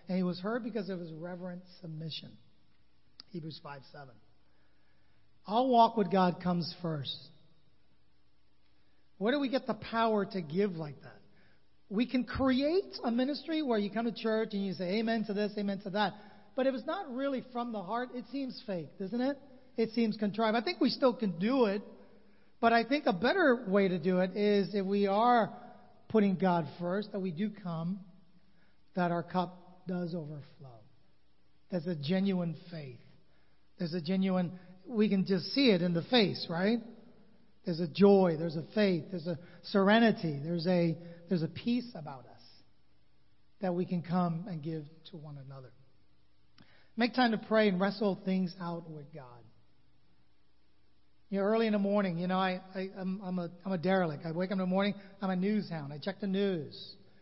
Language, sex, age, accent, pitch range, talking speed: English, male, 40-59, American, 170-215 Hz, 185 wpm